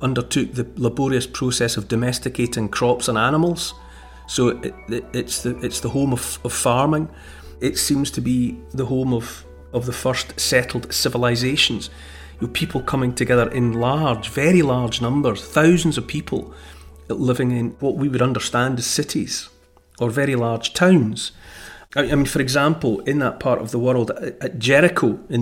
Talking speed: 170 wpm